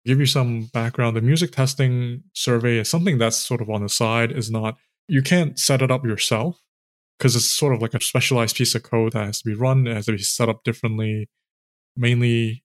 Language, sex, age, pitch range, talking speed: English, male, 20-39, 110-130 Hz, 225 wpm